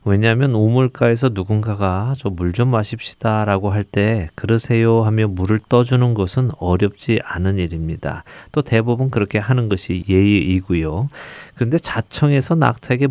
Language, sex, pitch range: Korean, male, 95-120 Hz